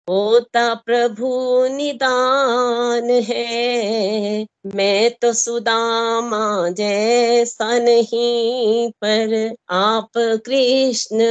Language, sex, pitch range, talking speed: Hindi, female, 225-260 Hz, 65 wpm